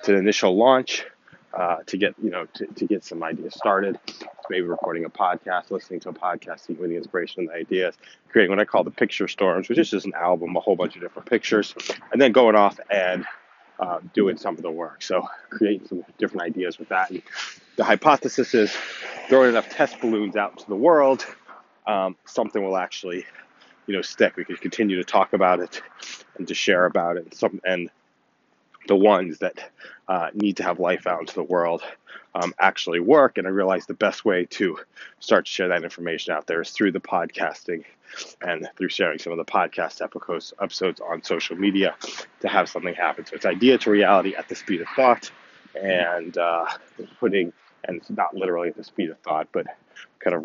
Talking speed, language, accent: 205 wpm, English, American